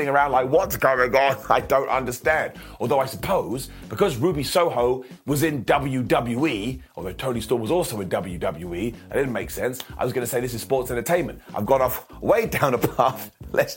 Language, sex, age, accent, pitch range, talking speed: English, male, 30-49, British, 125-180 Hz, 195 wpm